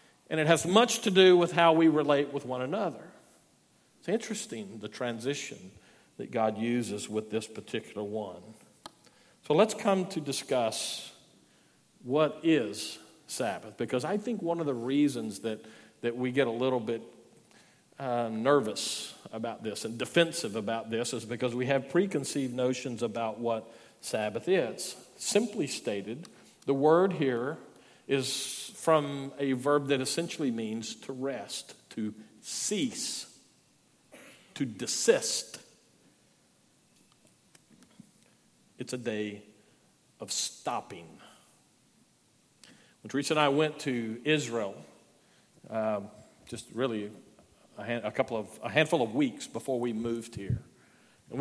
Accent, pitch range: American, 115-155 Hz